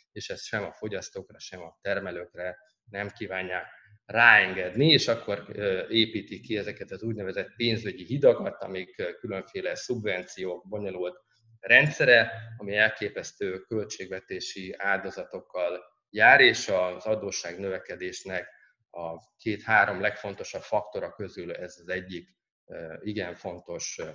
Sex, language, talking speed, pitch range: male, Hungarian, 110 wpm, 95-120 Hz